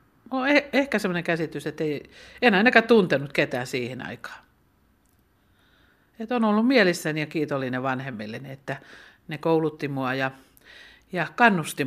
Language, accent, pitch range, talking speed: Finnish, native, 140-200 Hz, 125 wpm